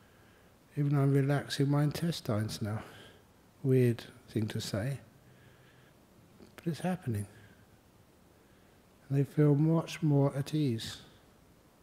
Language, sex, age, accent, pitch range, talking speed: English, male, 60-79, British, 115-145 Hz, 100 wpm